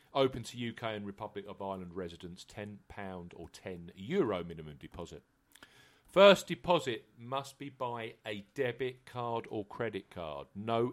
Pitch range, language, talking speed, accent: 95-125 Hz, English, 135 wpm, British